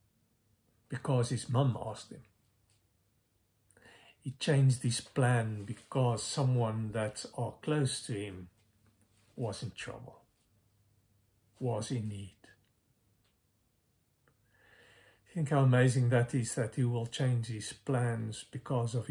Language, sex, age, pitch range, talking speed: English, male, 50-69, 105-135 Hz, 115 wpm